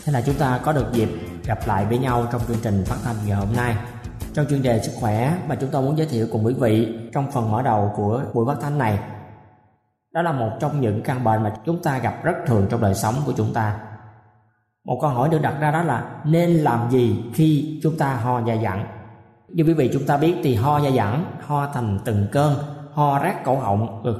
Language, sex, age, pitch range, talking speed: Vietnamese, male, 20-39, 110-150 Hz, 240 wpm